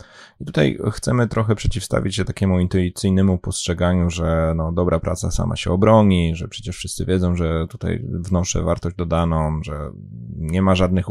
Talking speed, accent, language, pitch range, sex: 155 wpm, native, Polish, 85-95 Hz, male